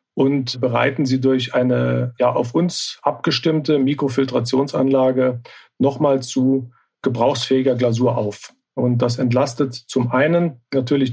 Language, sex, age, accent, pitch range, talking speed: German, male, 40-59, German, 125-150 Hz, 110 wpm